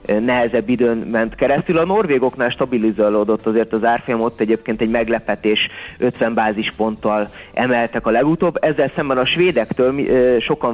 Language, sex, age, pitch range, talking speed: Hungarian, male, 30-49, 115-135 Hz, 135 wpm